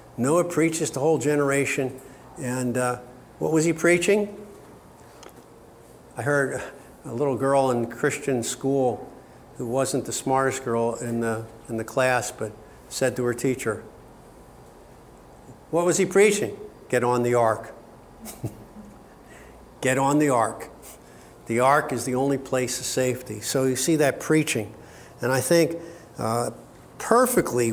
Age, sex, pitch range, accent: 50-69, male, 120-155 Hz, American